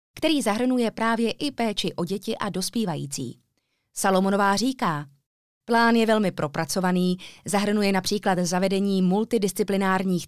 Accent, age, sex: native, 20-39, female